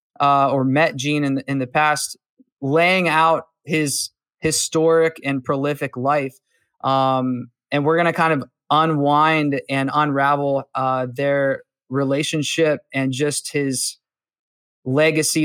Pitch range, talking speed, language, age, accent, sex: 135-155 Hz, 125 wpm, English, 20-39, American, male